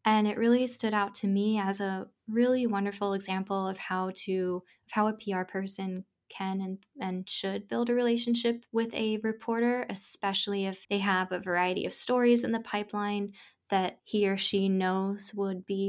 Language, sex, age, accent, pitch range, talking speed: English, female, 10-29, American, 190-220 Hz, 180 wpm